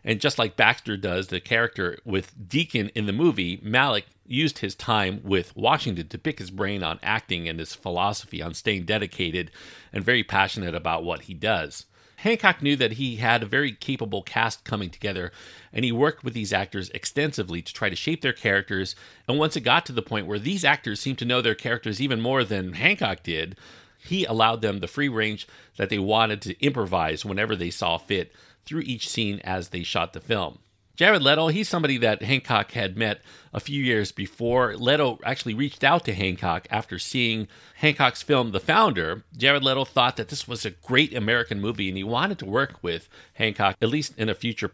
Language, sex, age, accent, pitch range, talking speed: English, male, 40-59, American, 100-140 Hz, 200 wpm